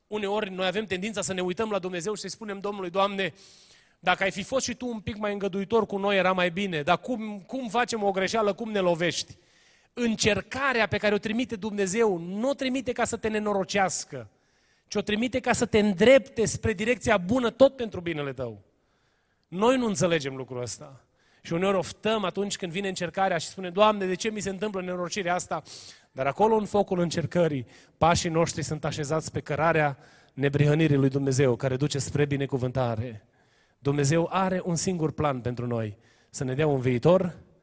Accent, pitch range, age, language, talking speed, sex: native, 135-205 Hz, 30-49, Romanian, 185 wpm, male